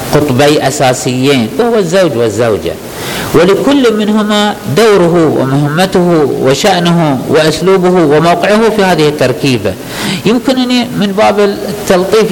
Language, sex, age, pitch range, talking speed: Arabic, male, 50-69, 130-190 Hz, 95 wpm